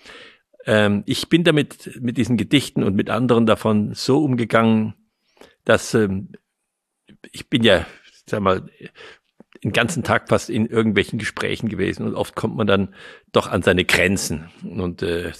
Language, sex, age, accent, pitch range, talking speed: German, male, 50-69, German, 95-120 Hz, 155 wpm